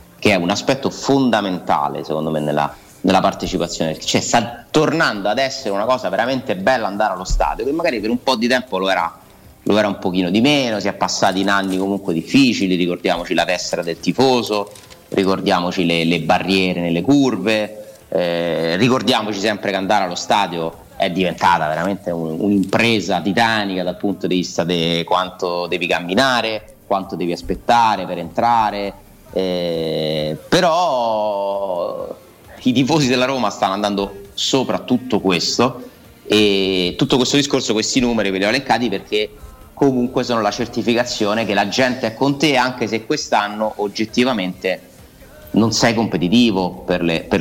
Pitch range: 90-120 Hz